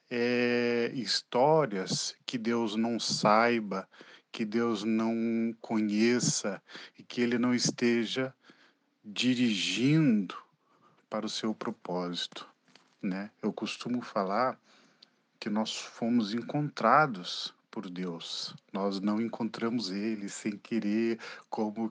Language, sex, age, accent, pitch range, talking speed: Portuguese, male, 40-59, Brazilian, 100-125 Hz, 100 wpm